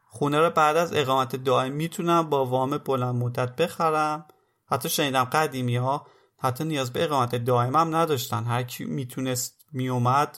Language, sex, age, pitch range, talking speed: Persian, male, 30-49, 125-155 Hz, 155 wpm